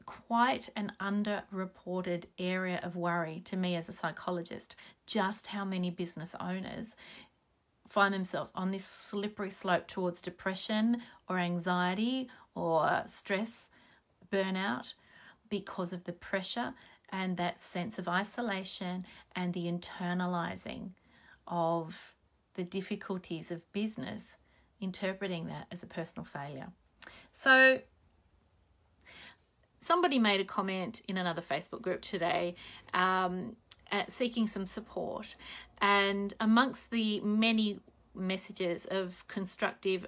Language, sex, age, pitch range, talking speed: English, female, 30-49, 180-215 Hz, 110 wpm